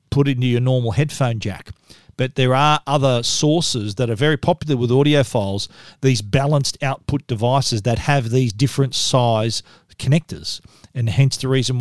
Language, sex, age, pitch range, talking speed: English, male, 40-59, 125-150 Hz, 165 wpm